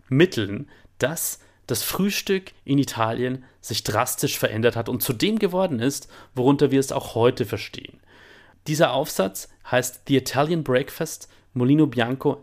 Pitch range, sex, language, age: 110-135 Hz, male, German, 30-49